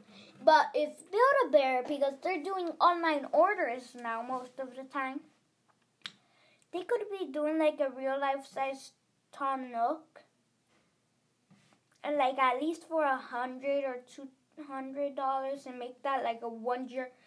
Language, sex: English, female